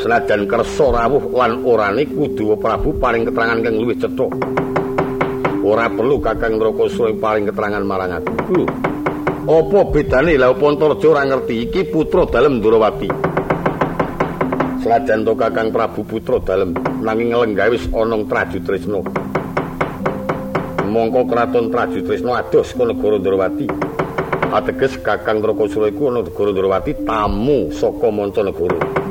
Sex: male